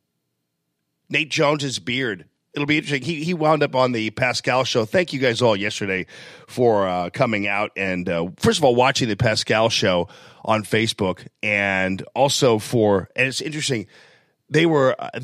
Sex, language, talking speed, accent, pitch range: male, English, 170 wpm, American, 105-135 Hz